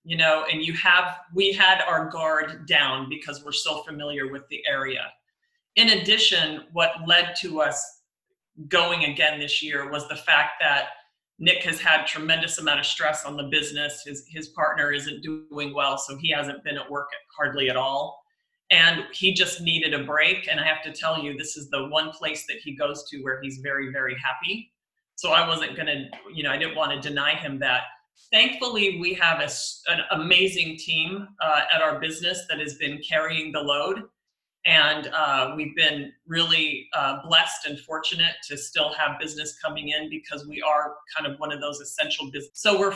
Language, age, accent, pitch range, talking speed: English, 40-59, American, 150-185 Hz, 195 wpm